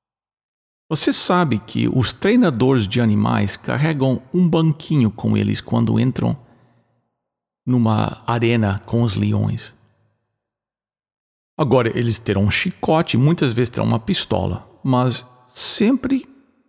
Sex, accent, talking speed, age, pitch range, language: male, Brazilian, 110 wpm, 60-79, 115-175 Hz, English